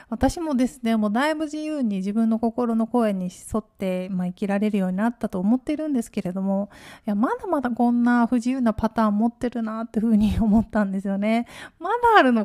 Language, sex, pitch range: Japanese, female, 205-260 Hz